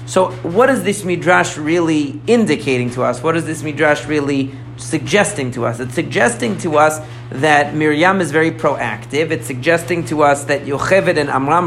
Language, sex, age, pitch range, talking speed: English, male, 40-59, 130-175 Hz, 175 wpm